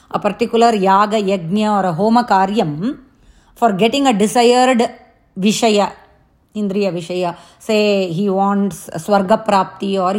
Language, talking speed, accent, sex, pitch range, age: English, 120 wpm, Indian, female, 200-255 Hz, 30-49